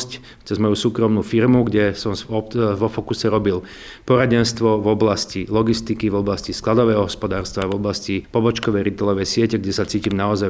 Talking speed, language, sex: 150 wpm, Slovak, male